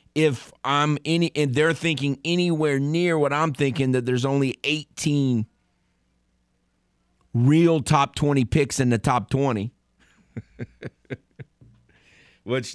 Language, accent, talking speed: English, American, 115 wpm